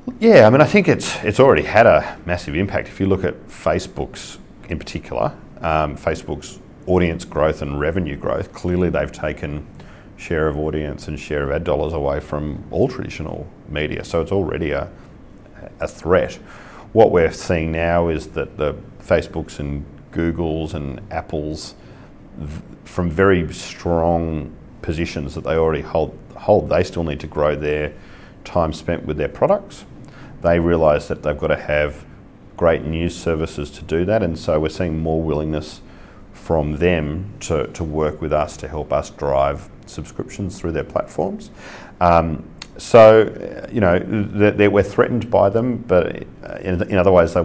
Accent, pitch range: Australian, 75-90 Hz